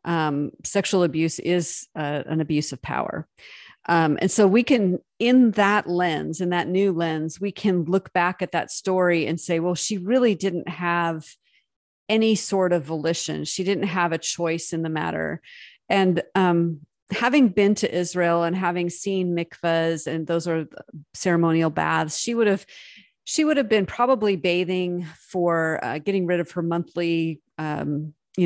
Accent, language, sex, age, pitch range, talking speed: American, English, female, 40-59, 165-200 Hz, 170 wpm